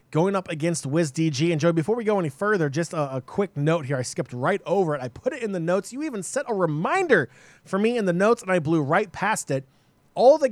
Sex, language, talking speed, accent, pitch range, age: male, English, 260 wpm, American, 130-170 Hz, 20-39